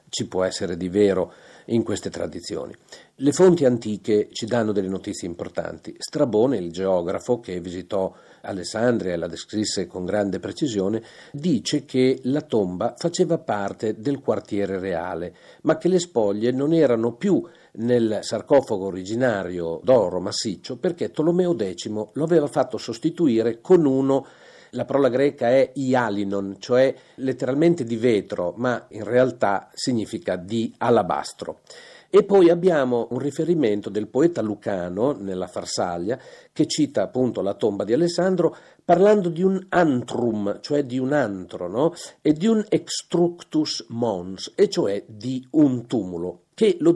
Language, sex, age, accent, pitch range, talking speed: Italian, male, 50-69, native, 105-160 Hz, 140 wpm